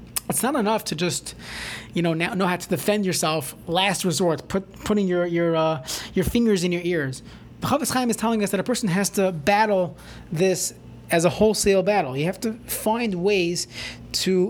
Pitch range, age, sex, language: 165-210 Hz, 30-49, male, English